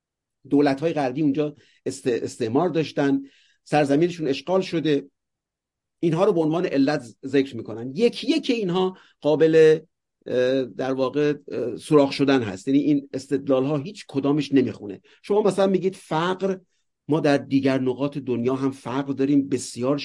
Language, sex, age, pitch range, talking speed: English, male, 50-69, 135-180 Hz, 135 wpm